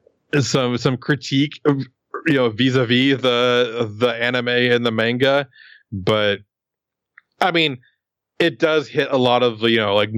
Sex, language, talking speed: male, English, 160 wpm